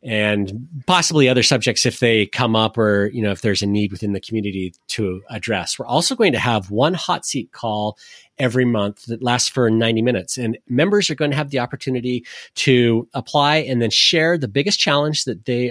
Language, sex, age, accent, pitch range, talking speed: English, male, 30-49, American, 110-135 Hz, 205 wpm